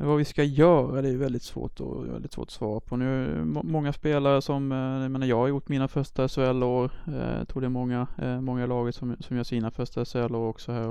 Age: 20-39